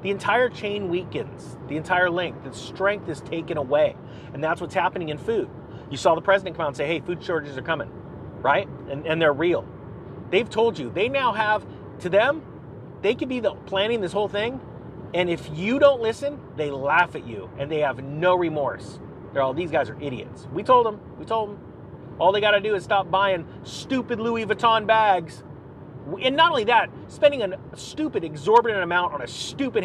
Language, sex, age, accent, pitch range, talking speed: English, male, 40-59, American, 145-200 Hz, 205 wpm